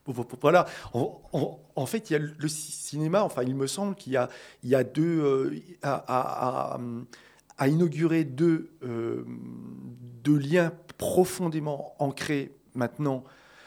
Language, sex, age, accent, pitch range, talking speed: French, male, 40-59, French, 135-175 Hz, 135 wpm